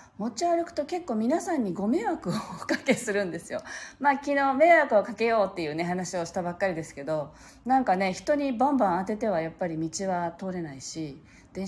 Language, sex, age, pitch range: Japanese, female, 40-59, 160-270 Hz